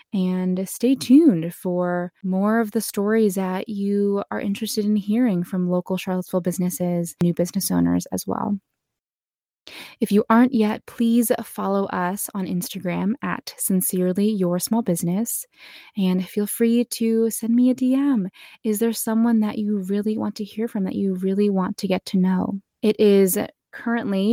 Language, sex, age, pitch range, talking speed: English, female, 20-39, 185-225 Hz, 165 wpm